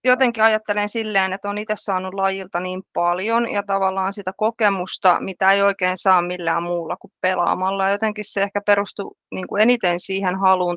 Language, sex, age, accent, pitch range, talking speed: Finnish, female, 30-49, native, 180-205 Hz, 165 wpm